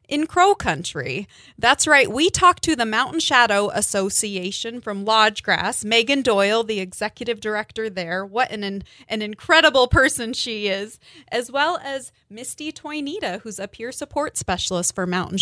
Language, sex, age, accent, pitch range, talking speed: English, female, 20-39, American, 200-255 Hz, 155 wpm